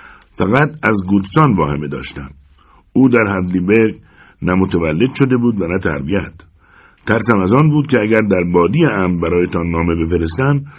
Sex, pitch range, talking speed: male, 90-125 Hz, 150 wpm